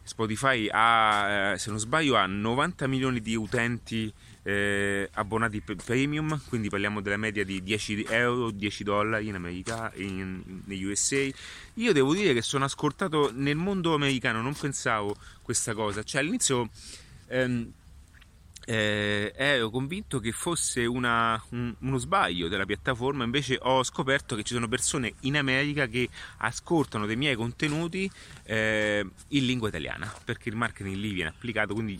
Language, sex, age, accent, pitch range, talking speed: Italian, male, 30-49, native, 100-130 Hz, 145 wpm